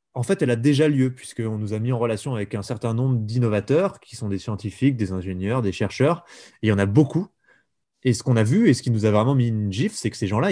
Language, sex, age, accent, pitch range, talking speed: French, male, 20-39, French, 110-140 Hz, 280 wpm